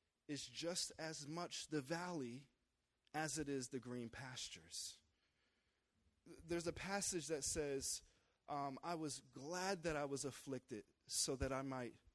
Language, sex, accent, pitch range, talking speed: English, male, American, 115-155 Hz, 145 wpm